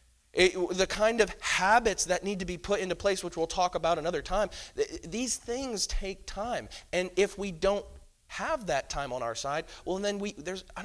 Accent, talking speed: American, 210 wpm